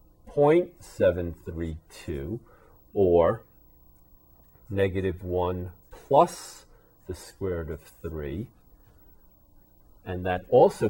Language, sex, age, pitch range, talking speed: English, male, 40-59, 80-100 Hz, 70 wpm